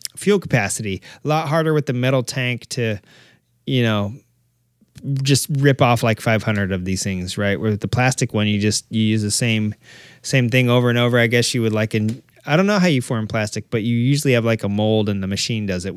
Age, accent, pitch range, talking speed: 20-39, American, 115-150 Hz, 235 wpm